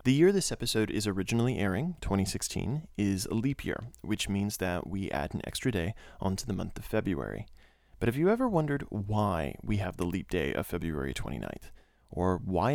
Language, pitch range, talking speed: English, 95-120 Hz, 195 wpm